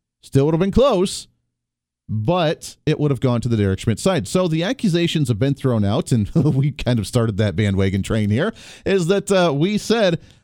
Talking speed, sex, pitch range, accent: 205 wpm, male, 120-170 Hz, American